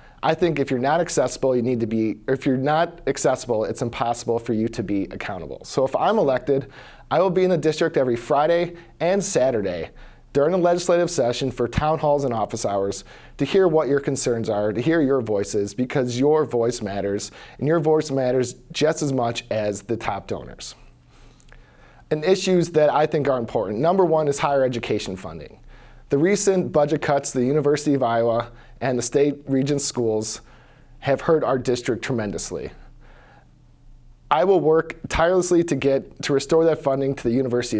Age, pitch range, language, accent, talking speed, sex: 40-59, 120-155 Hz, English, American, 185 wpm, male